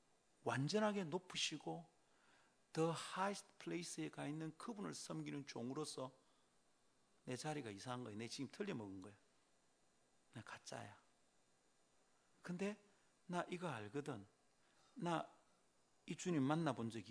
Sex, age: male, 40-59